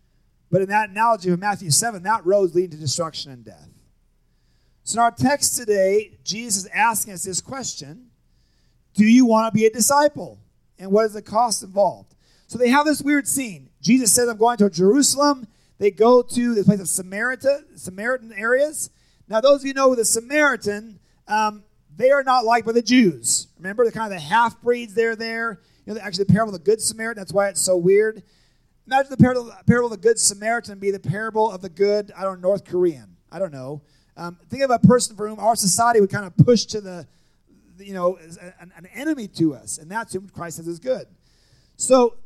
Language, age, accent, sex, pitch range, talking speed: English, 30-49, American, male, 185-240 Hz, 215 wpm